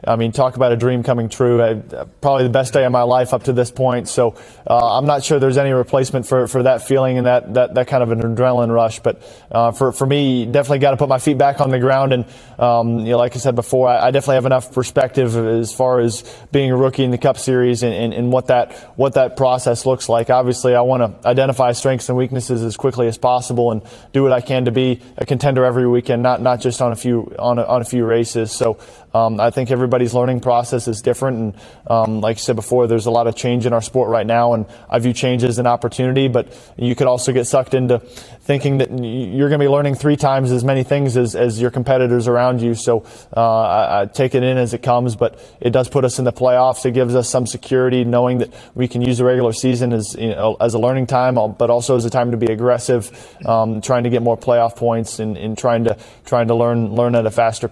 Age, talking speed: 20-39, 255 wpm